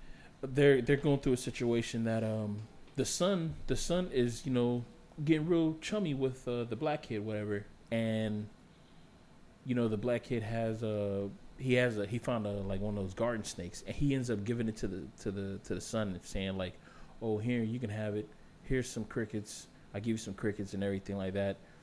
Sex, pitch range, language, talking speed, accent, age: male, 100-120 Hz, English, 210 wpm, American, 20-39